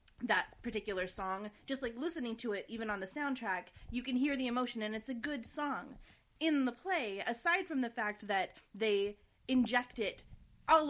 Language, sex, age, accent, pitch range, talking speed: English, female, 20-39, American, 220-300 Hz, 185 wpm